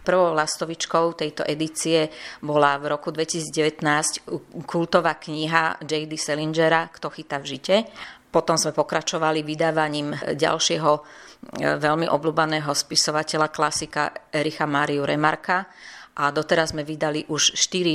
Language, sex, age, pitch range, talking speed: Slovak, female, 30-49, 145-160 Hz, 115 wpm